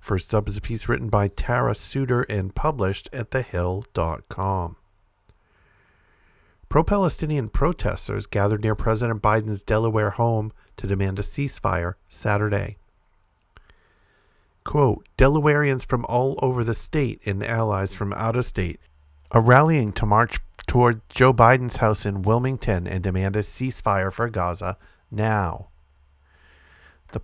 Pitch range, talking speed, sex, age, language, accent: 95-120 Hz, 125 wpm, male, 50-69, English, American